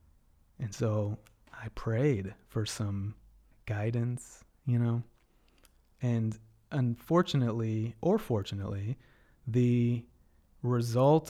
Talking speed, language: 80 wpm, English